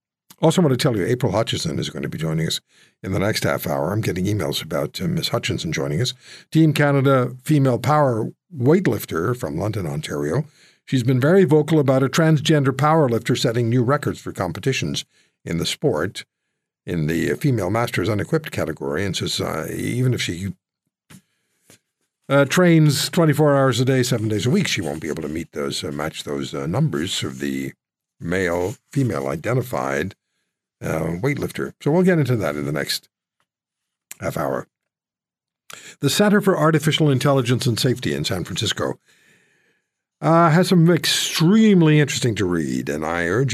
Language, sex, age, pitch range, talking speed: English, male, 60-79, 105-155 Hz, 170 wpm